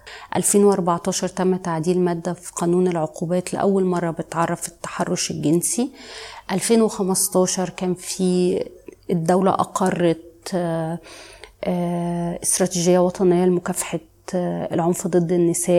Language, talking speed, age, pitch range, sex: Arabic, 90 wpm, 20-39, 170-190 Hz, female